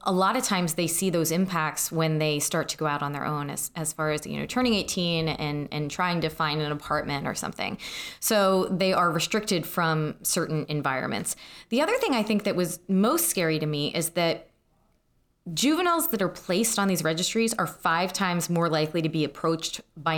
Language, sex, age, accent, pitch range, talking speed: English, female, 20-39, American, 155-195 Hz, 210 wpm